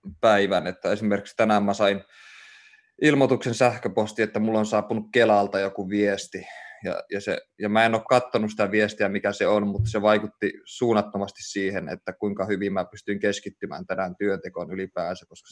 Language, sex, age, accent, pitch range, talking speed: Finnish, male, 20-39, native, 100-110 Hz, 170 wpm